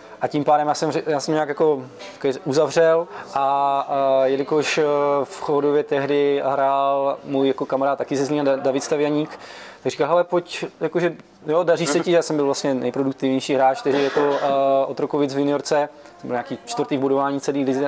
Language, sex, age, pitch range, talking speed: Czech, male, 20-39, 140-160 Hz, 175 wpm